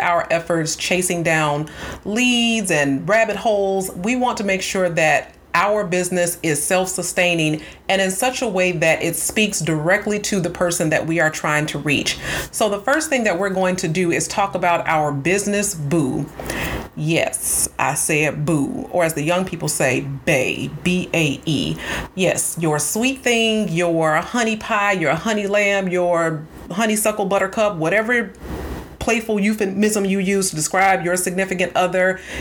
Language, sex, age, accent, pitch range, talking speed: English, female, 30-49, American, 165-205 Hz, 160 wpm